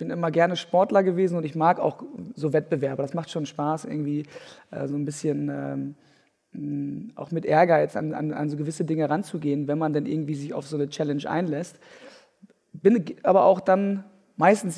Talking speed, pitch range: 190 wpm, 155-190 Hz